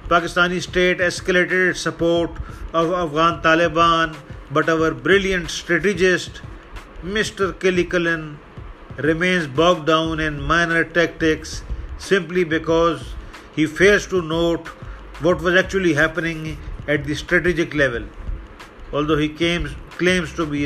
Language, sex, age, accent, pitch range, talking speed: English, male, 40-59, Indian, 150-175 Hz, 115 wpm